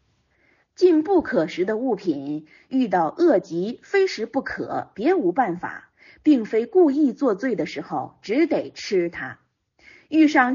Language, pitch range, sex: Chinese, 200-330 Hz, female